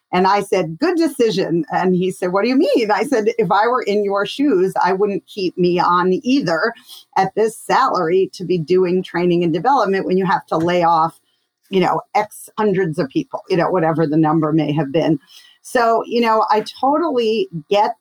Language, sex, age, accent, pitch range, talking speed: English, female, 40-59, American, 180-225 Hz, 205 wpm